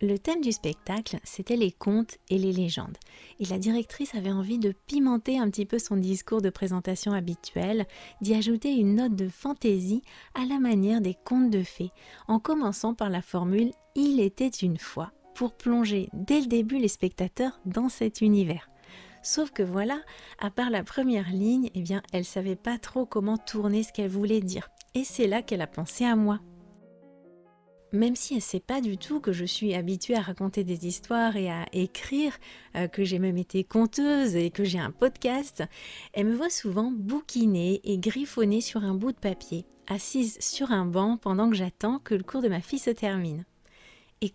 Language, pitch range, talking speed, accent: French, 190-235 Hz, 195 wpm, French